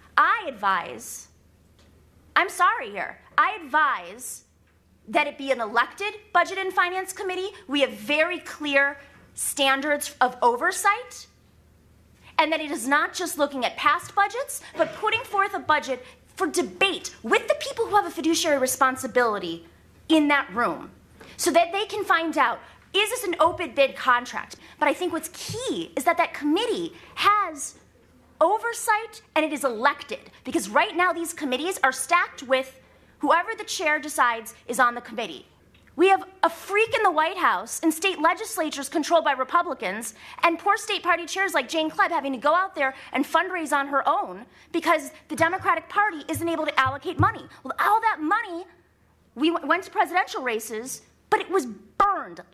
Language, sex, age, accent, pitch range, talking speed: English, female, 30-49, American, 285-380 Hz, 165 wpm